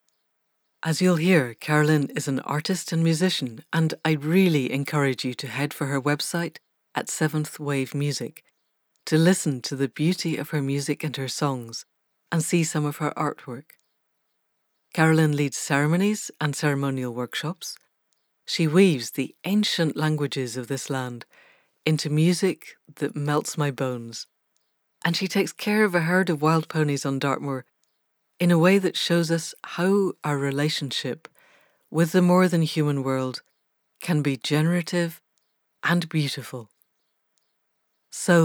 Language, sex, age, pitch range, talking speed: English, female, 60-79, 140-170 Hz, 140 wpm